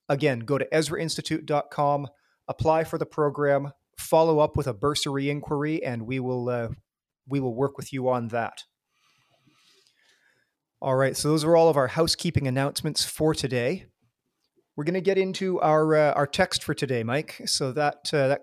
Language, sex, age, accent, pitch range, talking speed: English, male, 40-59, American, 125-155 Hz, 175 wpm